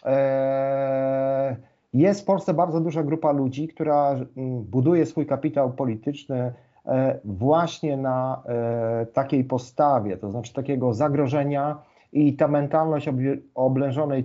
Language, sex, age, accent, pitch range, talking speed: Polish, male, 40-59, native, 130-155 Hz, 100 wpm